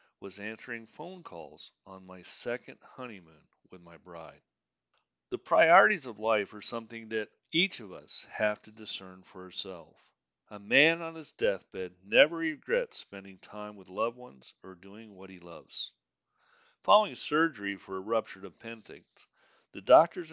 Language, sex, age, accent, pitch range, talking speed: English, male, 50-69, American, 95-150 Hz, 150 wpm